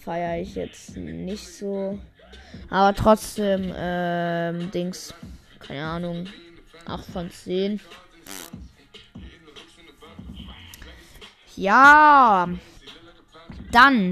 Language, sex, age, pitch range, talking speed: German, female, 20-39, 180-240 Hz, 70 wpm